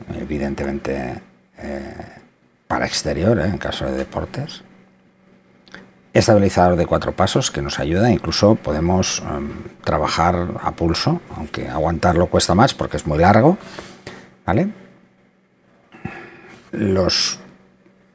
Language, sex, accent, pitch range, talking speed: Spanish, male, Spanish, 75-90 Hz, 105 wpm